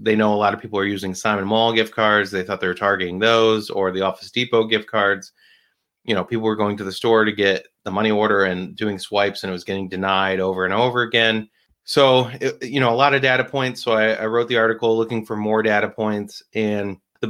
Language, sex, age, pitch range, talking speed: English, male, 30-49, 95-110 Hz, 245 wpm